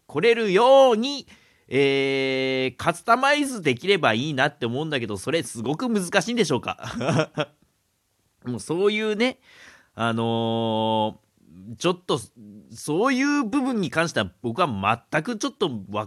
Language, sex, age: Japanese, male, 40-59